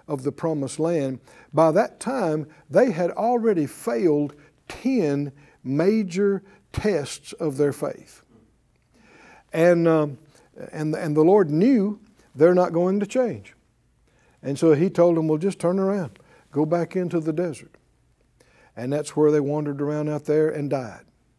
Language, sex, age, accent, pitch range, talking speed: English, male, 60-79, American, 145-210 Hz, 150 wpm